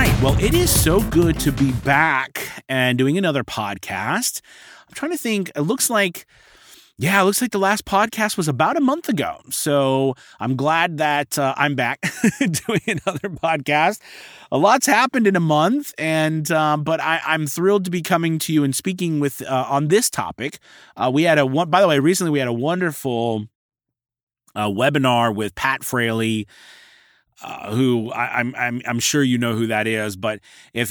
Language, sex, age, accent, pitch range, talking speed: English, male, 30-49, American, 100-145 Hz, 190 wpm